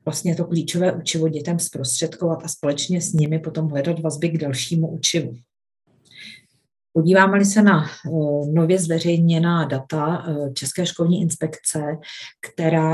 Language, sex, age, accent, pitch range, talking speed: Czech, female, 40-59, native, 140-165 Hz, 120 wpm